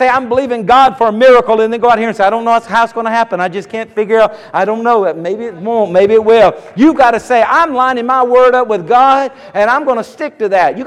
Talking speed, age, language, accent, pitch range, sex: 310 wpm, 50-69, English, American, 210-260 Hz, male